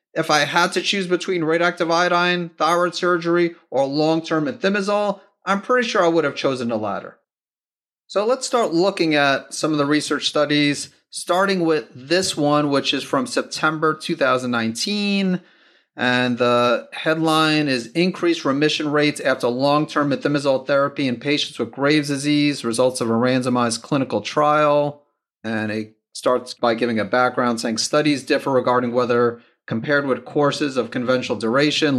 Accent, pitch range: American, 120-150 Hz